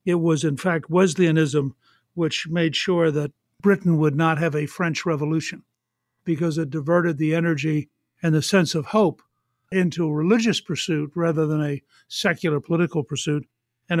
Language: English